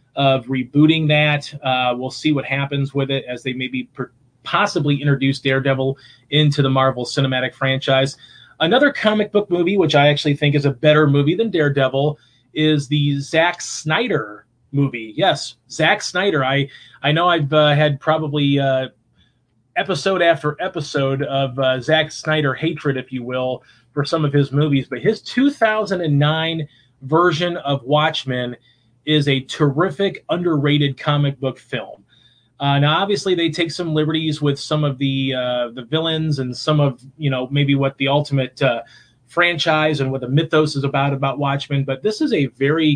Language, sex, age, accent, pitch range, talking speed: English, male, 30-49, American, 135-155 Hz, 165 wpm